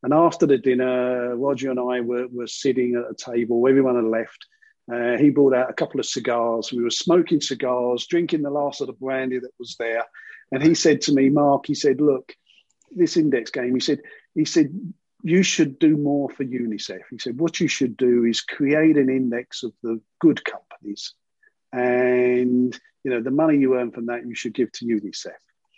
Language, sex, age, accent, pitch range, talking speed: English, male, 50-69, British, 125-155 Hz, 205 wpm